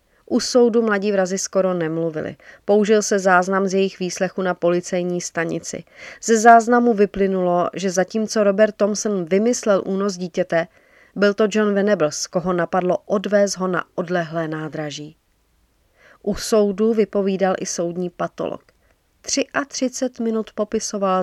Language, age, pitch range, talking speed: Czech, 40-59, 170-205 Hz, 125 wpm